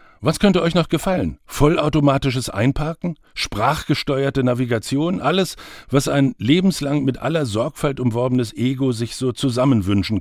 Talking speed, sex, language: 125 wpm, male, German